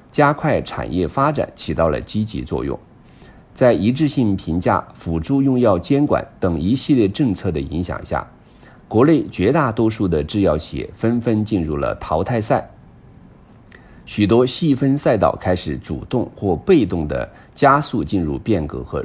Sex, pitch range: male, 80-115 Hz